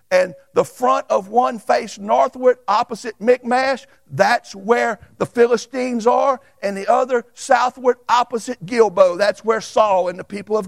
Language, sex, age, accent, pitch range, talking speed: English, male, 60-79, American, 215-270 Hz, 150 wpm